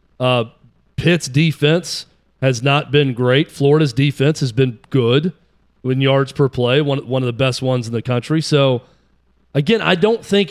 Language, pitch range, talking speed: English, 130-165 Hz, 170 wpm